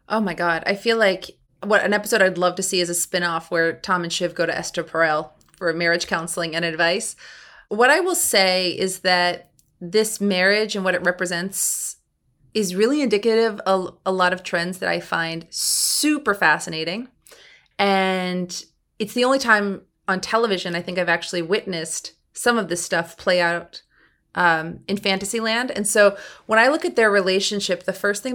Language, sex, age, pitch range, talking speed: English, female, 30-49, 170-205 Hz, 185 wpm